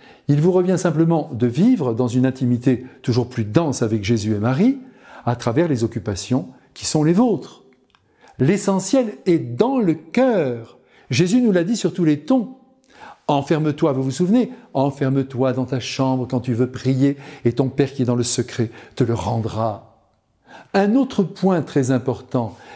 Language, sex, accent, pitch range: French, male, French, 125-180 Hz